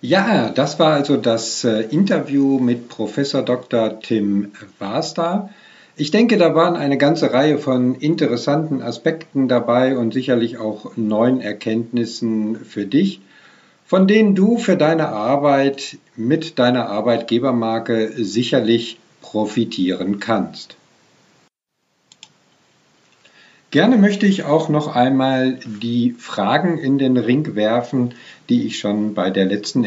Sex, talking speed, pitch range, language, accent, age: male, 120 wpm, 115-160 Hz, German, German, 50-69